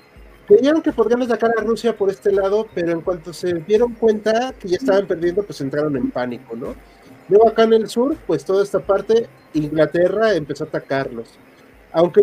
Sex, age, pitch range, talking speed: male, 40-59, 145-205 Hz, 185 wpm